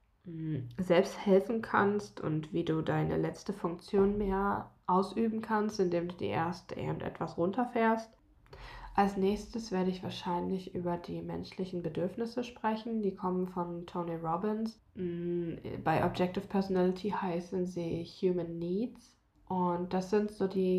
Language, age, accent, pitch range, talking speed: German, 20-39, German, 170-205 Hz, 130 wpm